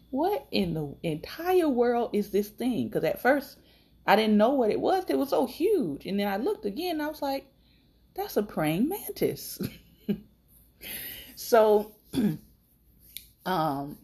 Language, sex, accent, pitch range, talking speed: English, female, American, 150-255 Hz, 155 wpm